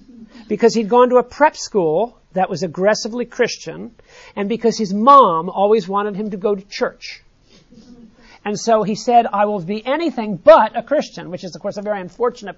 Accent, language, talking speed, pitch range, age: American, English, 190 wpm, 195-255 Hz, 50-69